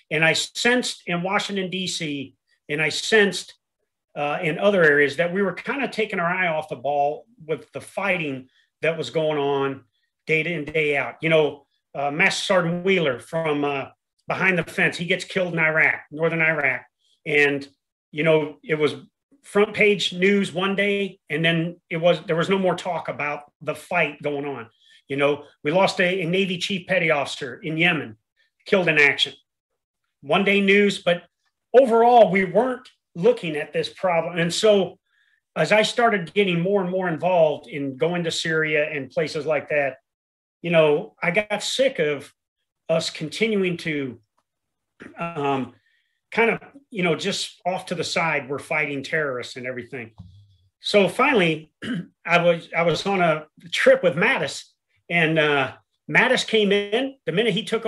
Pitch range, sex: 150-200 Hz, male